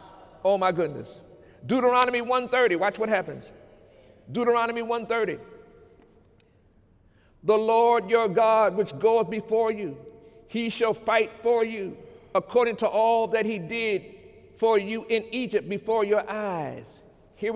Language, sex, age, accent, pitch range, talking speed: English, male, 50-69, American, 200-240 Hz, 125 wpm